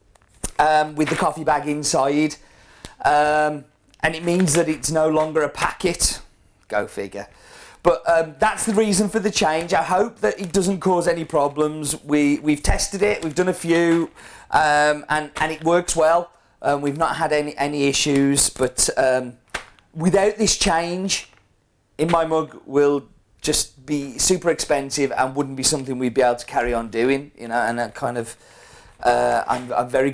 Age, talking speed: 40-59, 175 wpm